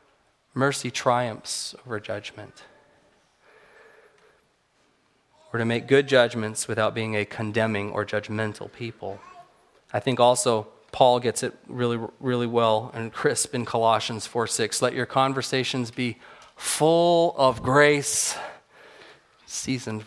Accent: American